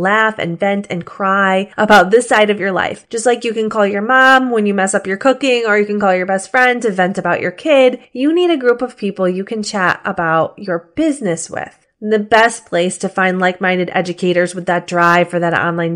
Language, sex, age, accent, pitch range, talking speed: English, female, 20-39, American, 185-240 Hz, 235 wpm